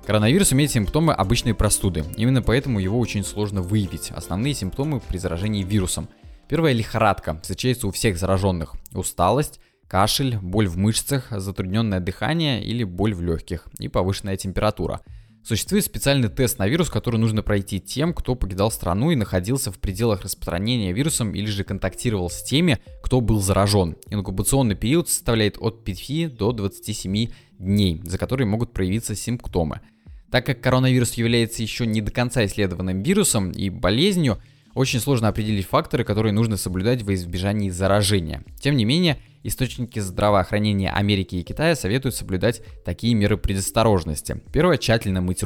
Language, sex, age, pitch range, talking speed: Russian, male, 20-39, 95-125 Hz, 150 wpm